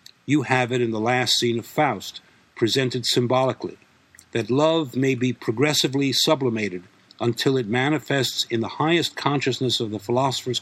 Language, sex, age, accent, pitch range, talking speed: English, male, 60-79, American, 115-140 Hz, 155 wpm